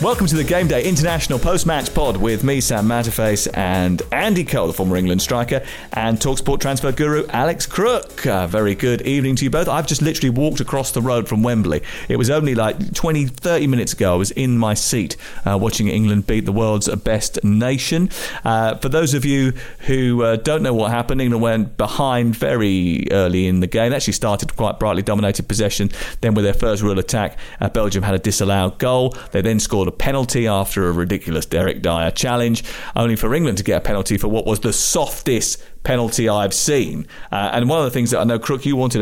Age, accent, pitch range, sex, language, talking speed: 40-59, British, 95-130 Hz, male, English, 215 wpm